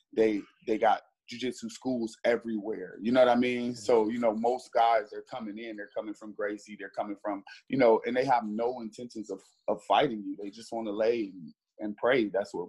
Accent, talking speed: American, 220 wpm